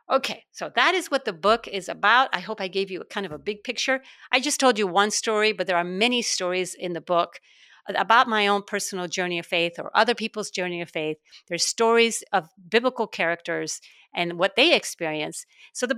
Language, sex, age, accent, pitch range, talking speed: English, female, 50-69, American, 175-225 Hz, 220 wpm